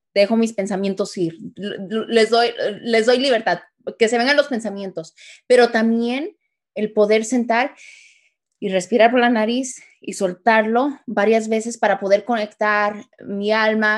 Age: 20-39